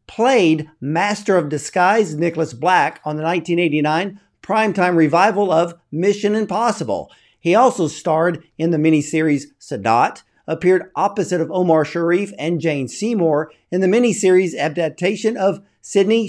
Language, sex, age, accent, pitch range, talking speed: English, male, 50-69, American, 155-205 Hz, 130 wpm